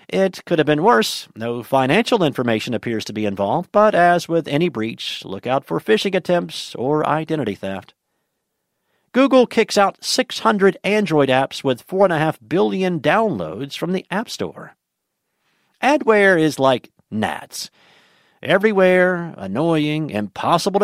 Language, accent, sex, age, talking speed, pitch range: English, American, male, 50-69, 130 wpm, 130-195 Hz